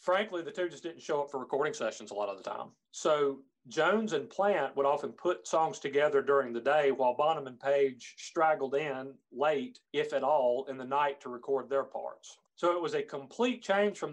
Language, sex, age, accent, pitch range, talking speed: English, male, 40-59, American, 135-180 Hz, 215 wpm